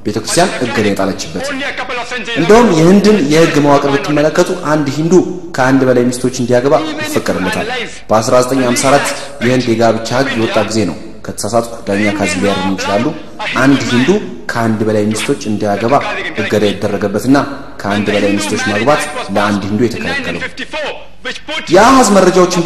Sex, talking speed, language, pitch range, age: male, 110 wpm, Amharic, 115-165 Hz, 30-49